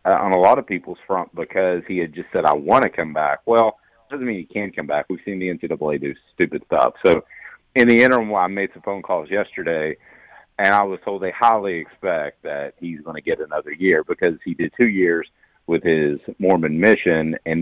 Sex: male